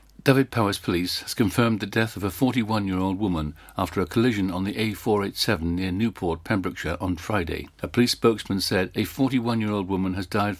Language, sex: English, male